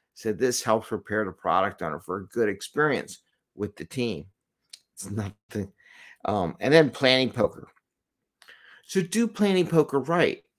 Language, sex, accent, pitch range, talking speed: English, male, American, 105-150 Hz, 155 wpm